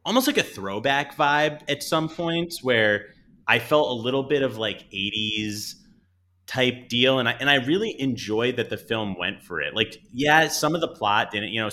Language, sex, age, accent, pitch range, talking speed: English, male, 30-49, American, 100-125 Hz, 205 wpm